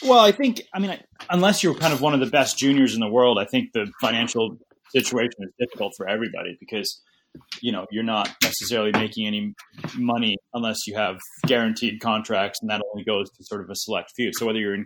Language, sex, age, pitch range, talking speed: English, male, 30-49, 110-130 Hz, 220 wpm